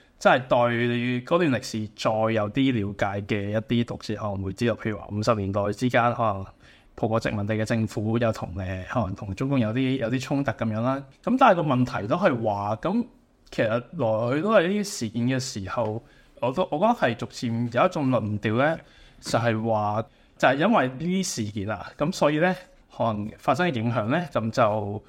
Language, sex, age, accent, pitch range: Chinese, male, 20-39, native, 110-135 Hz